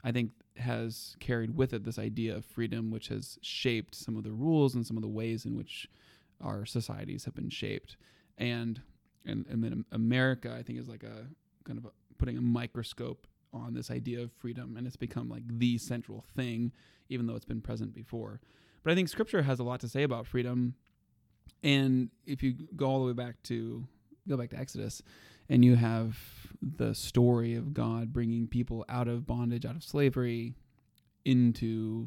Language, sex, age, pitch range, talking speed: English, male, 20-39, 110-125 Hz, 195 wpm